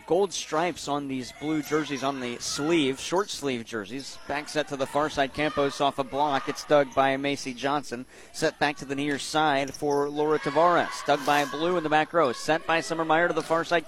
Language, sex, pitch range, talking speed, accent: English, male, 145-165 Hz, 220 wpm, American